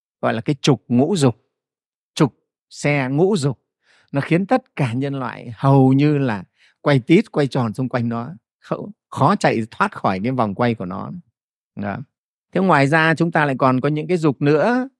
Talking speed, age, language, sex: 190 wpm, 30-49, Vietnamese, male